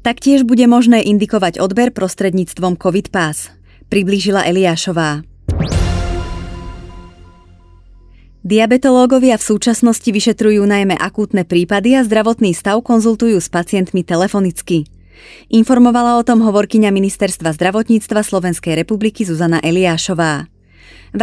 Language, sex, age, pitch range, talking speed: Slovak, female, 20-39, 175-225 Hz, 100 wpm